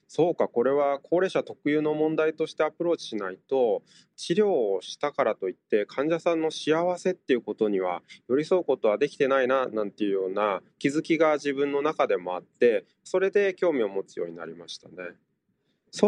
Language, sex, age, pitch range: Japanese, male, 20-39, 120-180 Hz